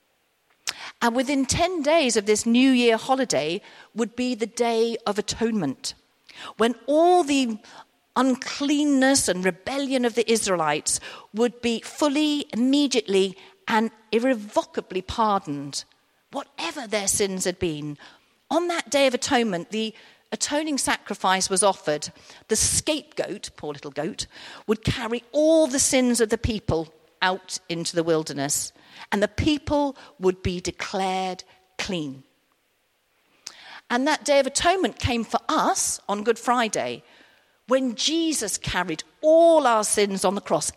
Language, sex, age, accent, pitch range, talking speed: English, female, 50-69, British, 185-265 Hz, 130 wpm